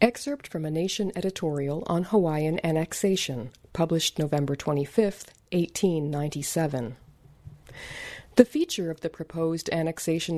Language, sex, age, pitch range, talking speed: English, female, 40-59, 150-195 Hz, 105 wpm